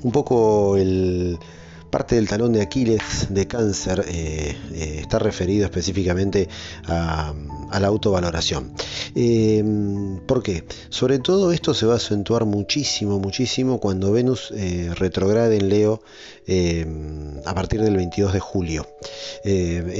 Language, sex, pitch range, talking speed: Spanish, male, 85-110 Hz, 135 wpm